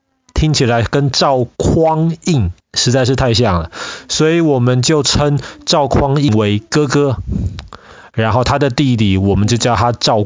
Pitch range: 110-155 Hz